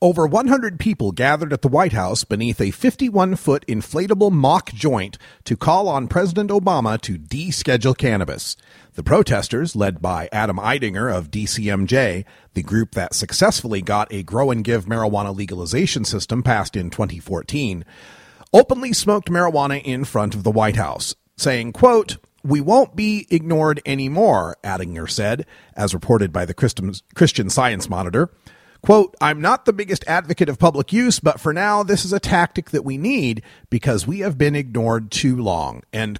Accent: American